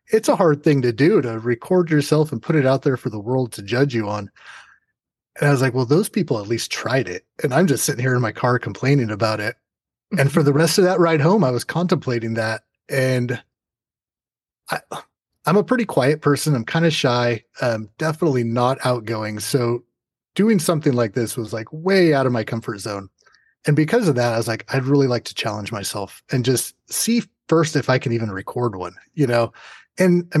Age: 30-49